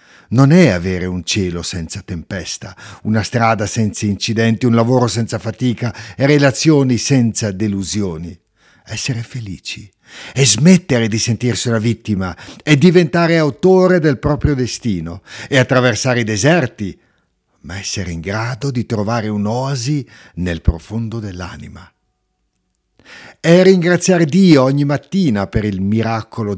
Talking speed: 125 wpm